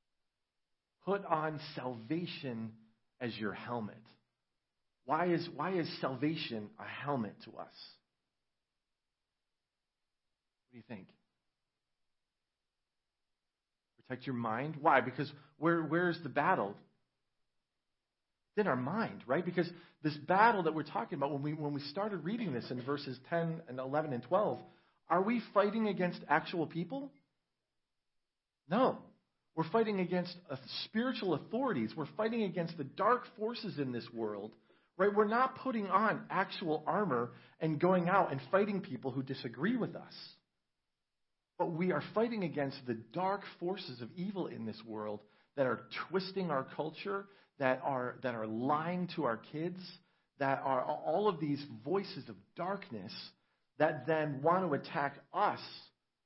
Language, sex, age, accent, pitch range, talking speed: English, male, 40-59, American, 135-185 Hz, 140 wpm